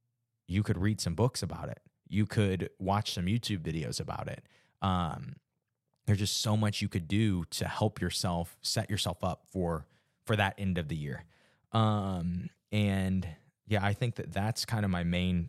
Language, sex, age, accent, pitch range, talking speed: English, male, 20-39, American, 90-115 Hz, 180 wpm